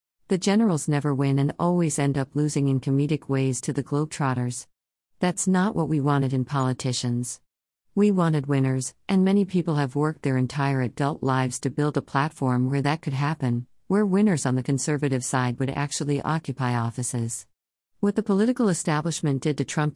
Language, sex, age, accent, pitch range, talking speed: English, female, 50-69, American, 130-155 Hz, 175 wpm